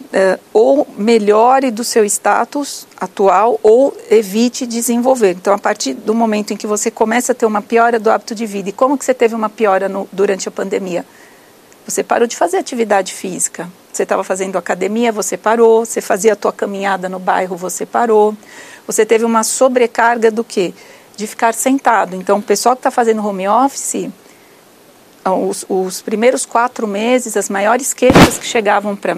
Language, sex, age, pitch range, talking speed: Portuguese, female, 50-69, 210-235 Hz, 180 wpm